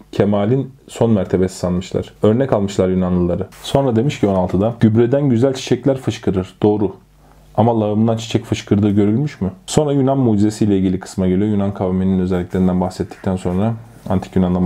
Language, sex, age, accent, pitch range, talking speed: Turkish, male, 30-49, native, 100-120 Hz, 145 wpm